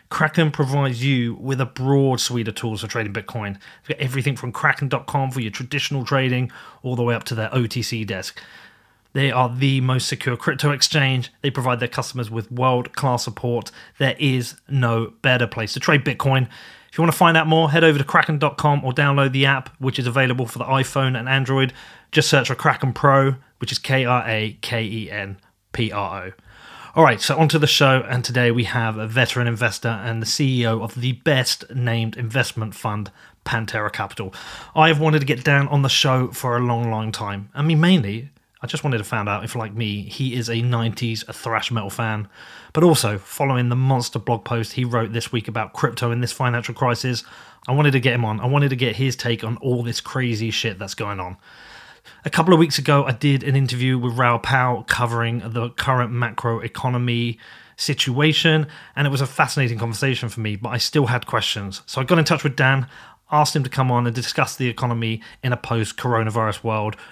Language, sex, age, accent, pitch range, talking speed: English, male, 30-49, British, 115-135 Hz, 200 wpm